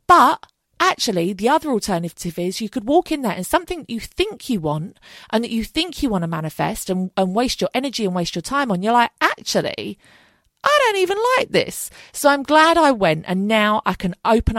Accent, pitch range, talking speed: British, 175-280 Hz, 220 wpm